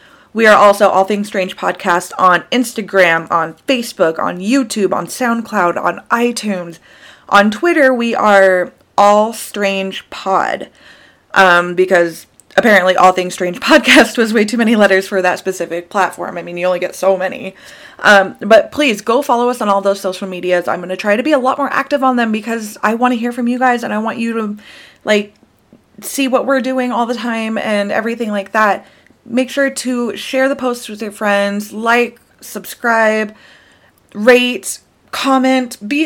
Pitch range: 195-250 Hz